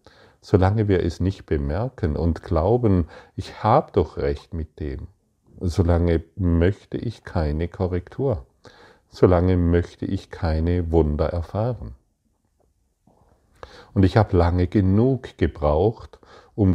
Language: German